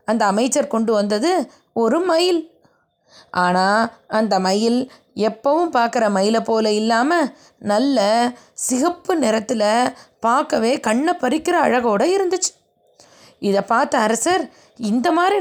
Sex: female